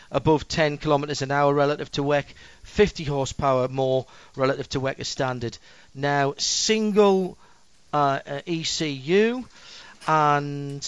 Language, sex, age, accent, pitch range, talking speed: English, male, 40-59, British, 130-160 Hz, 110 wpm